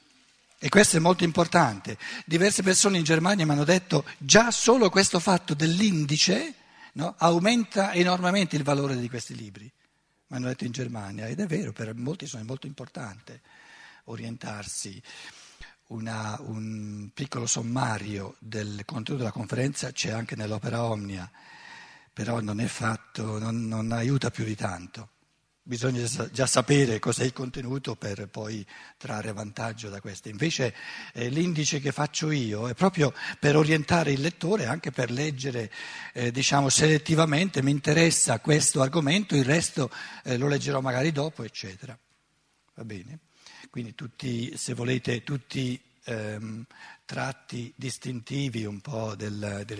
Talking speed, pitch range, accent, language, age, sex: 135 wpm, 115-165 Hz, native, Italian, 50-69, male